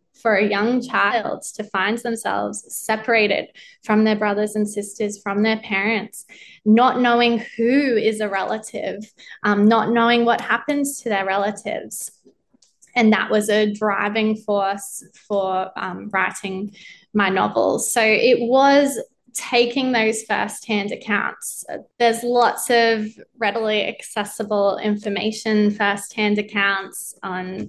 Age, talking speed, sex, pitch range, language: 20-39, 125 wpm, female, 205-230 Hz, English